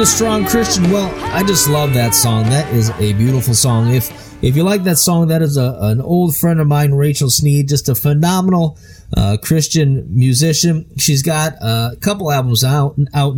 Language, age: English, 30-49